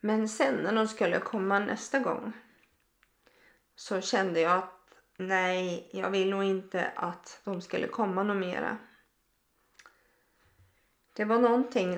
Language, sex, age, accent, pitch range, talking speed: Swedish, female, 30-49, native, 195-250 Hz, 130 wpm